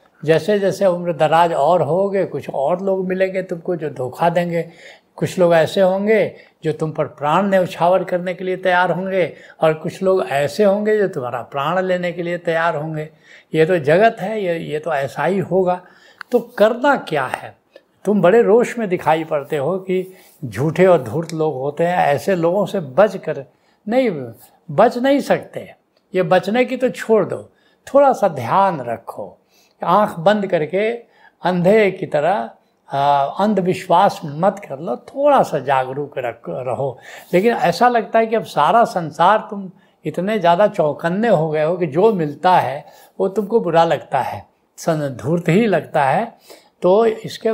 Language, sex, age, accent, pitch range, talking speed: Hindi, male, 70-89, native, 160-205 Hz, 170 wpm